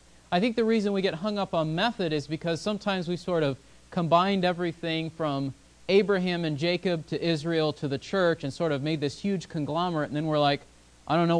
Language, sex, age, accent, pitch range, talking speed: English, male, 30-49, American, 140-185 Hz, 215 wpm